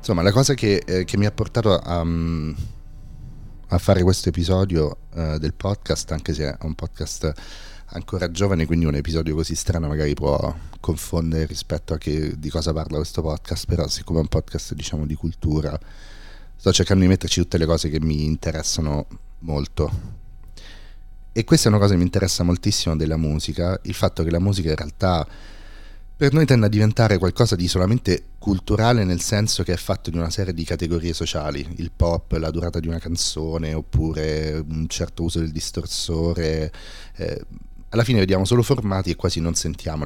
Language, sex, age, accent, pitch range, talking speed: Italian, male, 30-49, native, 80-95 Hz, 180 wpm